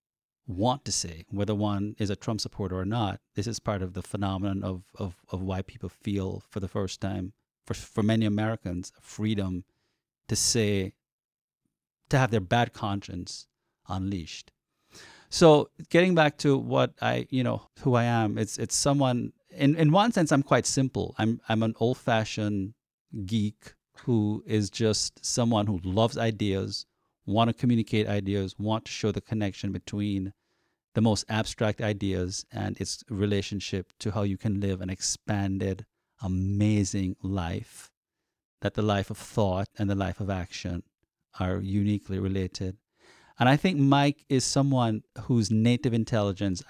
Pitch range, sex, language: 95-120 Hz, male, English